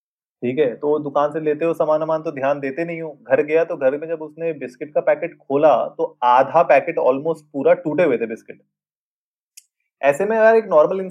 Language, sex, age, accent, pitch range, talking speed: Hindi, male, 30-49, native, 130-180 Hz, 185 wpm